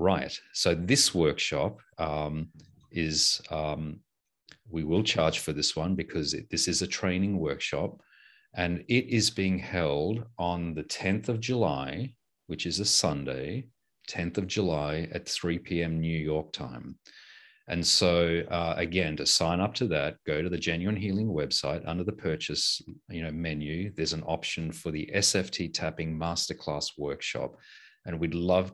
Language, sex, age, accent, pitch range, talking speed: English, male, 40-59, Australian, 80-100 Hz, 160 wpm